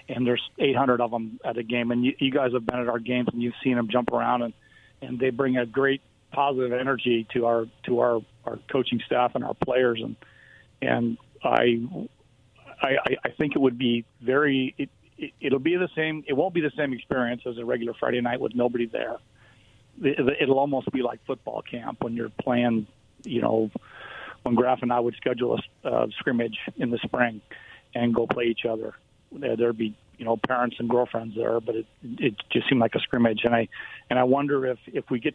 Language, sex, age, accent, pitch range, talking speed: English, male, 40-59, American, 115-130 Hz, 210 wpm